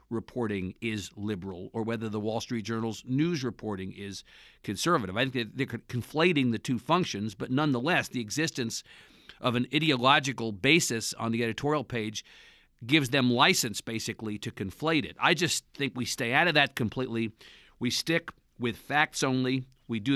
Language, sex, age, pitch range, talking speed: English, male, 50-69, 115-150 Hz, 165 wpm